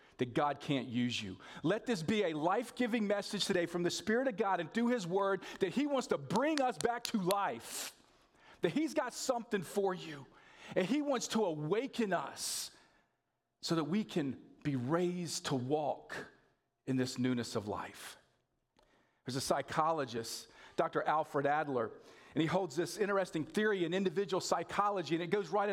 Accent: American